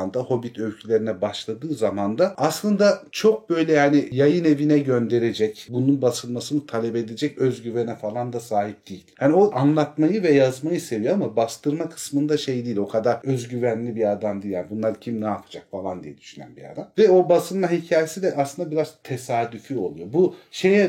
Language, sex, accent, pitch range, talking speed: Turkish, male, native, 105-150 Hz, 170 wpm